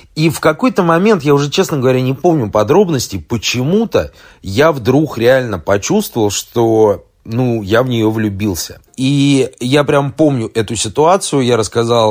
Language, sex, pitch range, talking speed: Russian, male, 100-135 Hz, 150 wpm